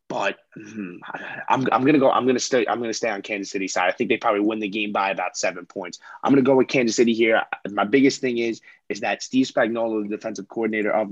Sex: male